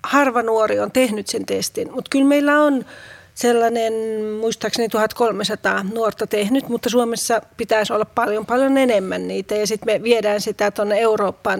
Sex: female